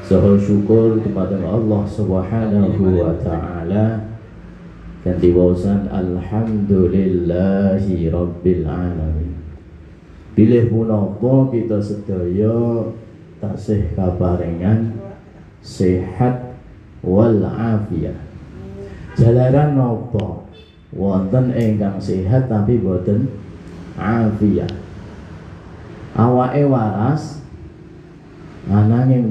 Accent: native